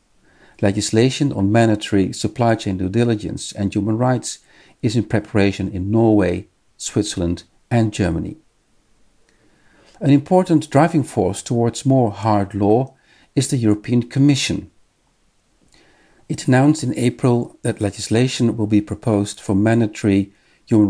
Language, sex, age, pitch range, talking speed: English, male, 50-69, 100-120 Hz, 120 wpm